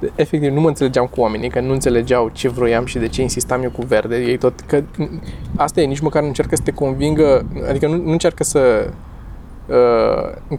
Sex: male